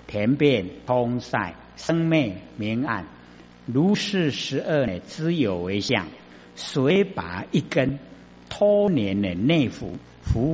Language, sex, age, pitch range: Chinese, male, 60-79, 95-140 Hz